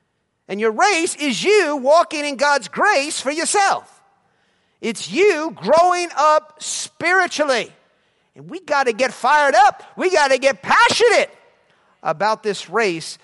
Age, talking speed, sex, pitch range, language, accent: 50-69, 140 wpm, male, 205-280 Hz, English, American